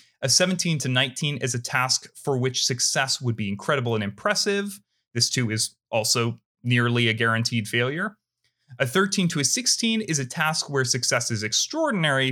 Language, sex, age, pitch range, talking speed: English, male, 30-49, 115-150 Hz, 170 wpm